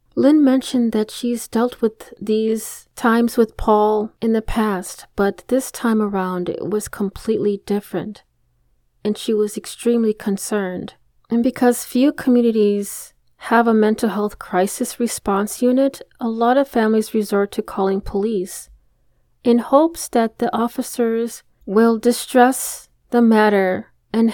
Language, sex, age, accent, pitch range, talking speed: English, female, 30-49, American, 205-245 Hz, 135 wpm